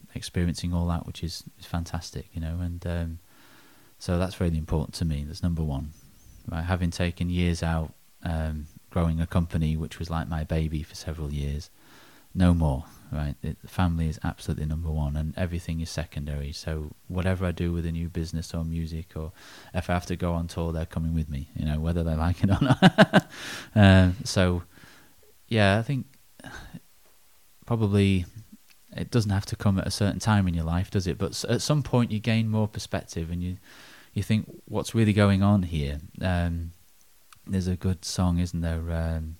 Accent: British